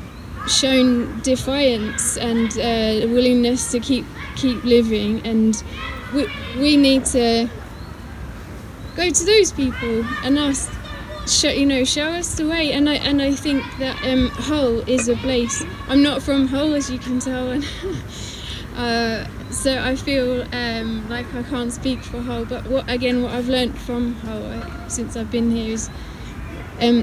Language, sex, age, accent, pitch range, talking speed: English, female, 20-39, British, 235-275 Hz, 160 wpm